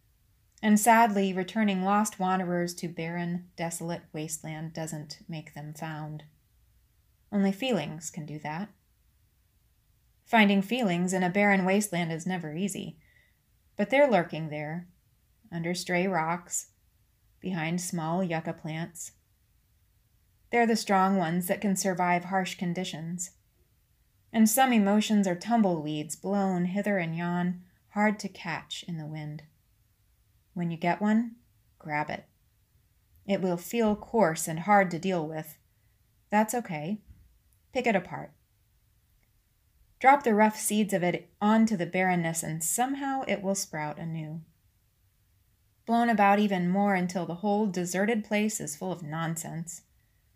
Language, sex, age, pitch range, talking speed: English, female, 20-39, 150-195 Hz, 130 wpm